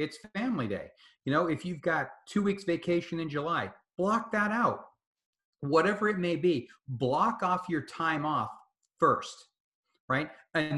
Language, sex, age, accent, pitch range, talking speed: English, male, 40-59, American, 130-170 Hz, 155 wpm